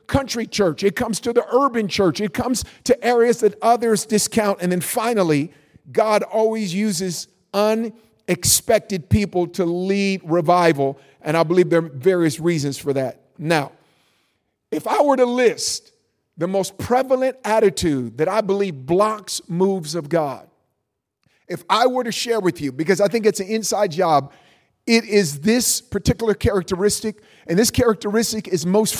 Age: 50-69